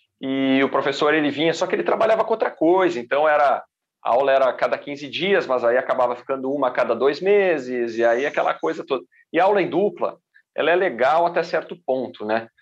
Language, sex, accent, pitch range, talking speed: Portuguese, male, Brazilian, 120-160 Hz, 215 wpm